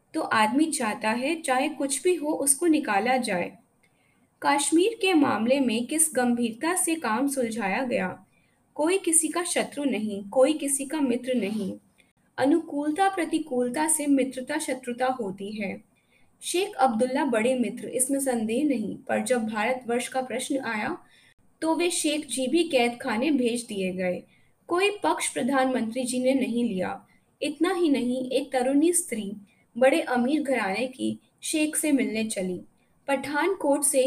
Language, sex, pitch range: Hindi, female, 230-300 Hz